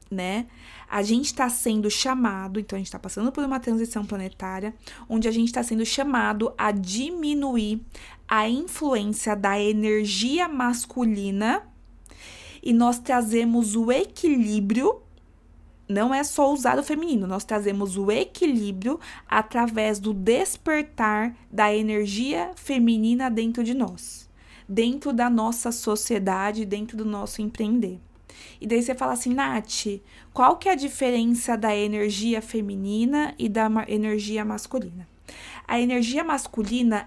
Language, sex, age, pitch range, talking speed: Portuguese, female, 20-39, 205-240 Hz, 130 wpm